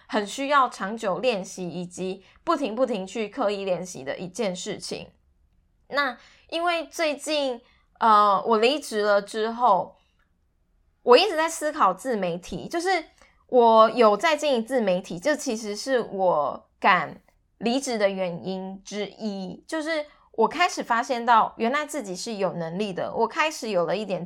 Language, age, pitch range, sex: Chinese, 20-39, 195-265 Hz, female